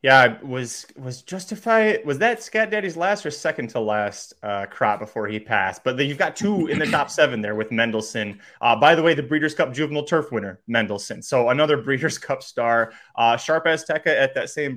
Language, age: English, 20-39